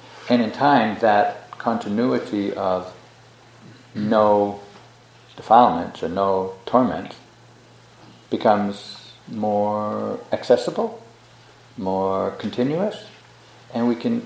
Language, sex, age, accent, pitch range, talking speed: English, male, 50-69, American, 95-120 Hz, 80 wpm